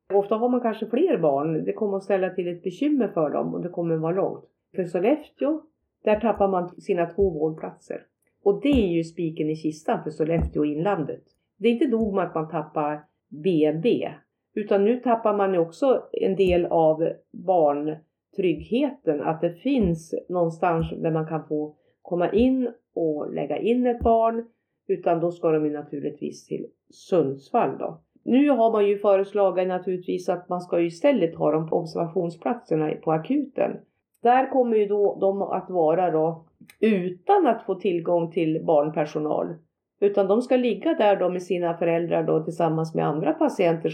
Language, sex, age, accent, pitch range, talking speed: Swedish, female, 40-59, native, 160-215 Hz, 170 wpm